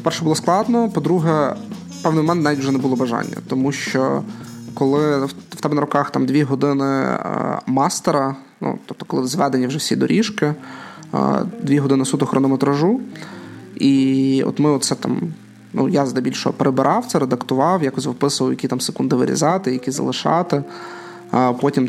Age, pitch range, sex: 20-39, 130-165 Hz, male